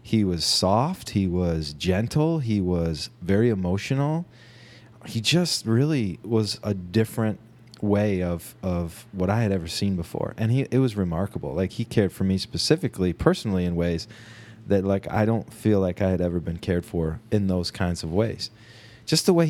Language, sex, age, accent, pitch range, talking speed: English, male, 30-49, American, 95-120 Hz, 180 wpm